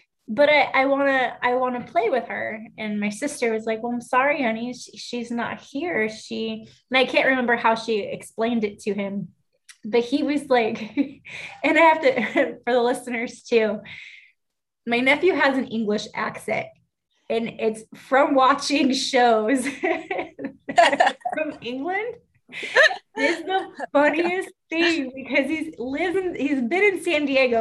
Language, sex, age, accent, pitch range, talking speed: English, female, 20-39, American, 240-310 Hz, 155 wpm